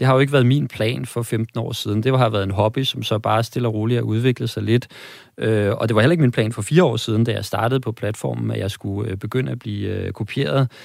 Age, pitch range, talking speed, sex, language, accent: 30-49, 110-130 Hz, 280 wpm, male, Danish, native